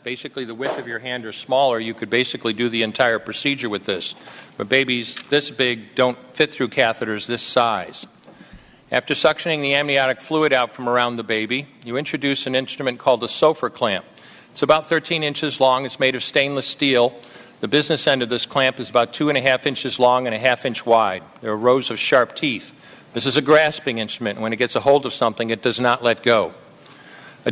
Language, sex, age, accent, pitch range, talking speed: English, male, 50-69, American, 120-140 Hz, 215 wpm